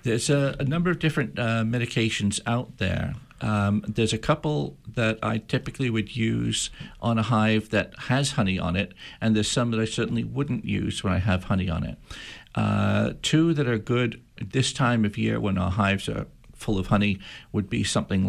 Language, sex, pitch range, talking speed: English, male, 95-115 Hz, 195 wpm